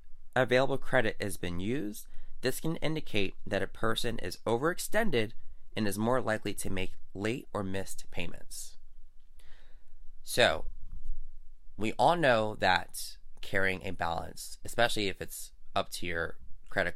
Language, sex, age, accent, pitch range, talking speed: English, male, 20-39, American, 80-115 Hz, 135 wpm